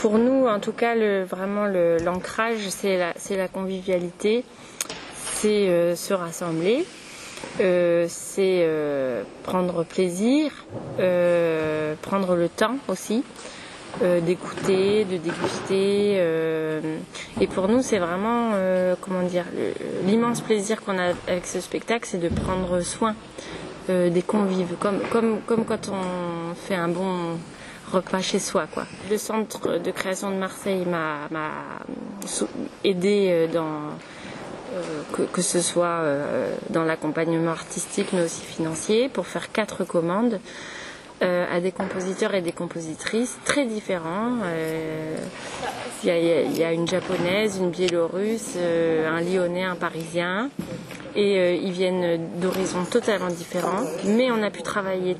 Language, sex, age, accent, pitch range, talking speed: English, female, 20-39, French, 170-205 Hz, 135 wpm